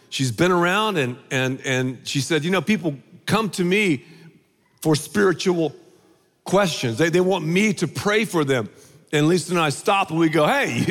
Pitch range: 165-240 Hz